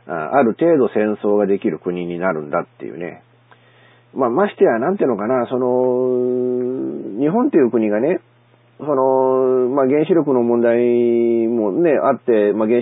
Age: 40-59